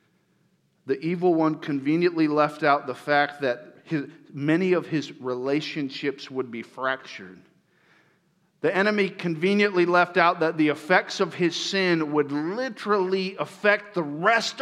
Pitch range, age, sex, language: 170-235 Hz, 50-69, male, English